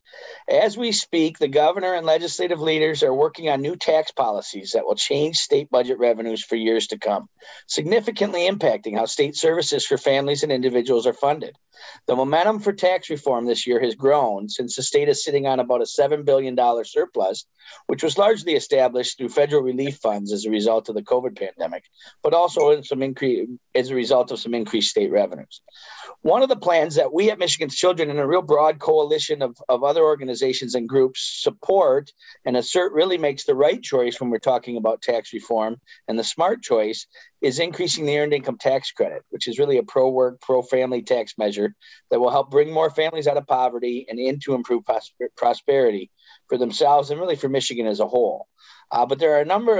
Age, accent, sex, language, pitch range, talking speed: 40-59, American, male, English, 125-185 Hz, 195 wpm